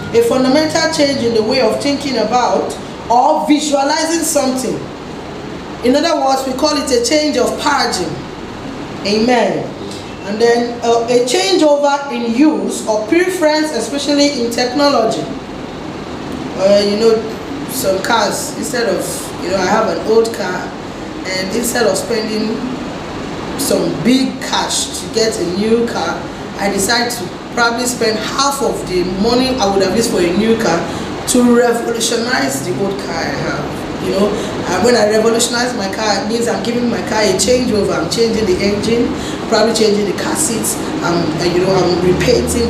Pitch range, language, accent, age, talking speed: 215-265 Hz, English, Nigerian, 20-39, 165 wpm